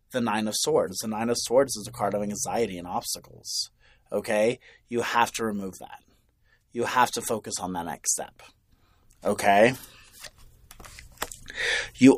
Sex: male